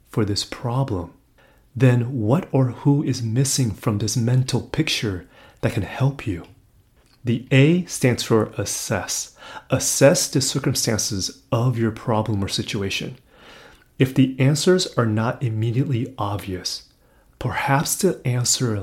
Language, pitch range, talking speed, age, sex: English, 105-135 Hz, 125 wpm, 30-49, male